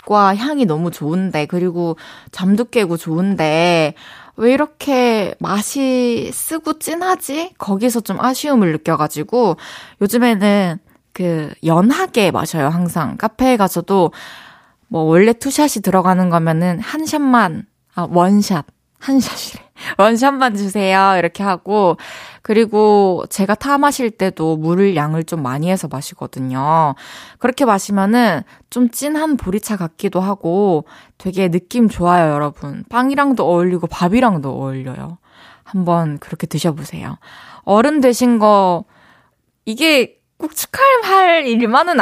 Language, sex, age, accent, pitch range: Korean, female, 20-39, native, 175-240 Hz